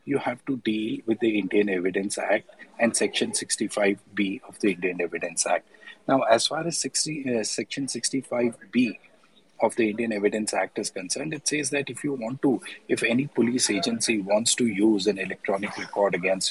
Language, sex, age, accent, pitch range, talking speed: English, male, 30-49, Indian, 105-130 Hz, 180 wpm